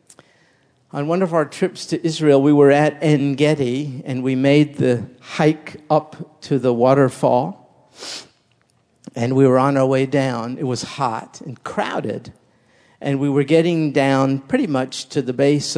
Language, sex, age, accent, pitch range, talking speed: English, male, 50-69, American, 130-165 Hz, 165 wpm